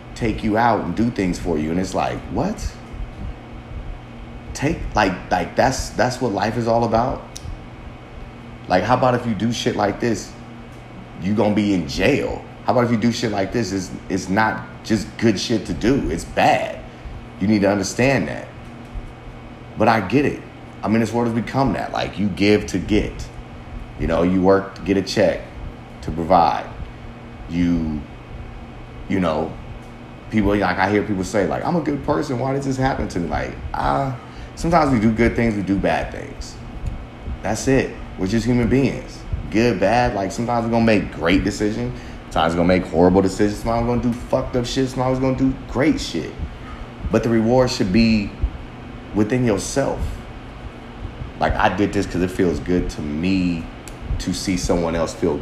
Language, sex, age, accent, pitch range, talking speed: English, male, 30-49, American, 90-120 Hz, 190 wpm